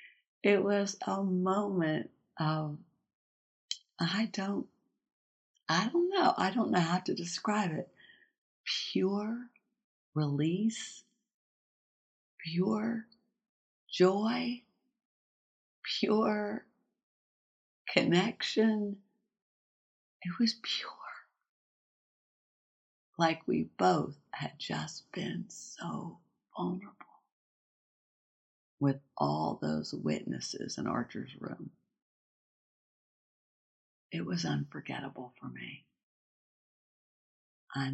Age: 60-79